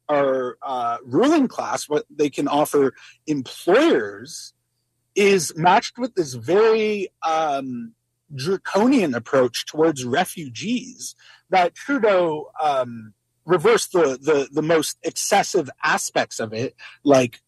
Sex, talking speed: male, 105 wpm